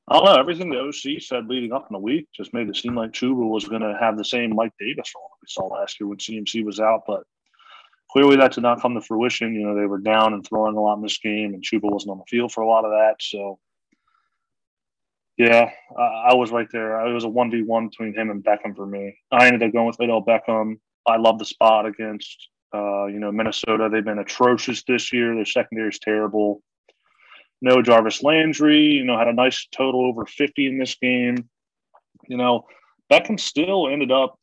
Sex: male